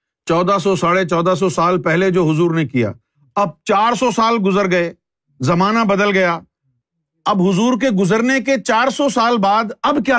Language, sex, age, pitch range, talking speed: Urdu, male, 50-69, 165-235 Hz, 170 wpm